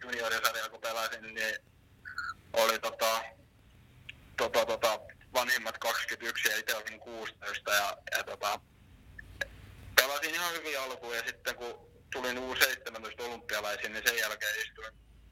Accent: native